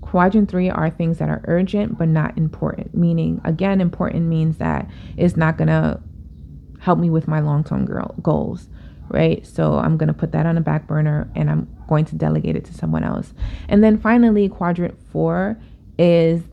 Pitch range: 150-180 Hz